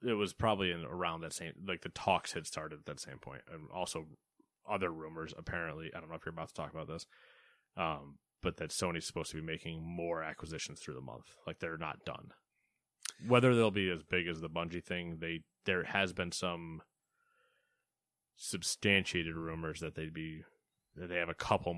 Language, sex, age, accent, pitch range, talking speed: English, male, 20-39, American, 80-95 Hz, 200 wpm